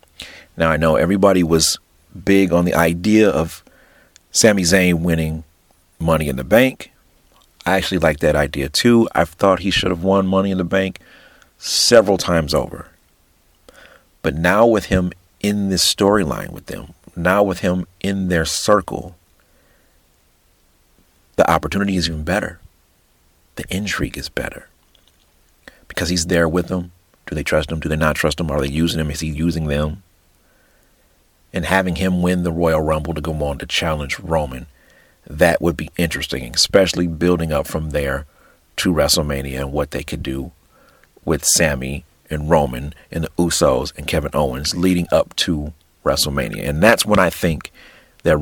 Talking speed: 165 wpm